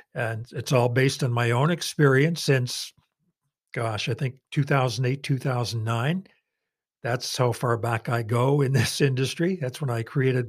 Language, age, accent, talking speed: English, 60-79, American, 155 wpm